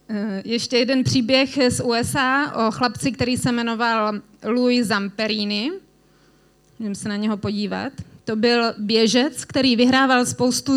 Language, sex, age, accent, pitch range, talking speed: Czech, female, 30-49, native, 215-245 Hz, 135 wpm